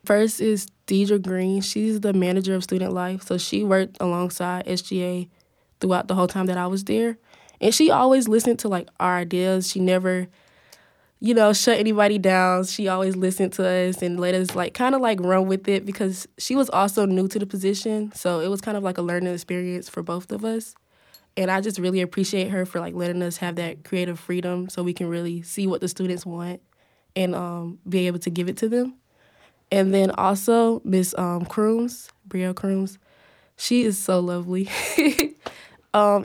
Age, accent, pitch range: 20-39, American, 180-205 Hz